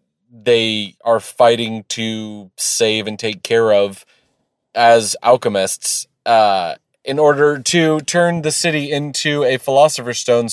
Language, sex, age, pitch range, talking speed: English, male, 30-49, 105-135 Hz, 125 wpm